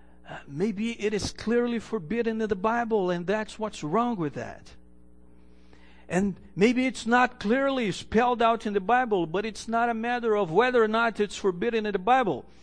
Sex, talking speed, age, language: male, 185 wpm, 50-69, English